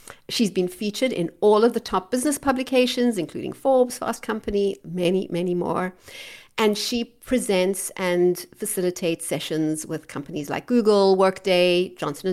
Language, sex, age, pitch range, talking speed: English, female, 60-79, 180-250 Hz, 140 wpm